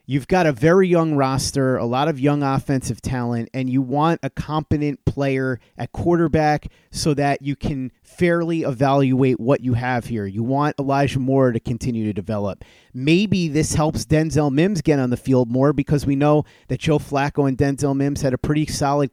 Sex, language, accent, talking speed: male, English, American, 190 wpm